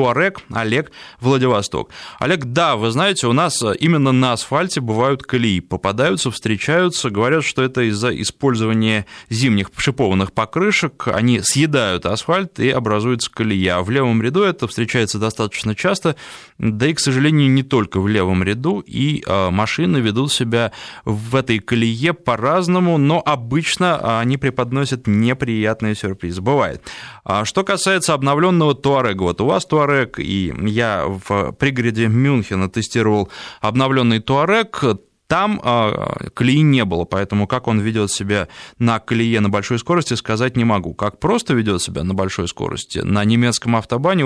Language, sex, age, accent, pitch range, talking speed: Russian, male, 20-39, native, 105-140 Hz, 145 wpm